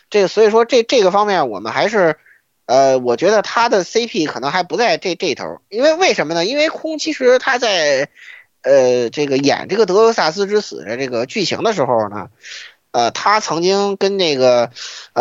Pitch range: 130-215 Hz